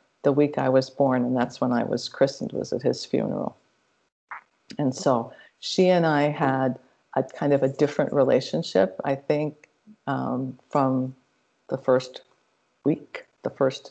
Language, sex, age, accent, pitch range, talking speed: English, female, 50-69, American, 135-155 Hz, 155 wpm